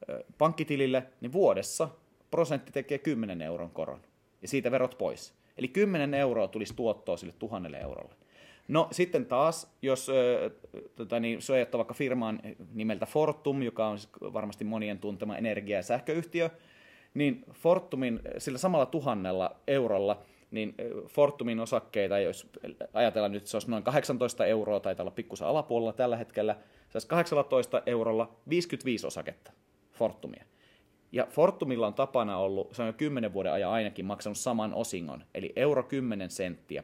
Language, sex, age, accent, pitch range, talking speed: Finnish, male, 30-49, native, 110-145 Hz, 145 wpm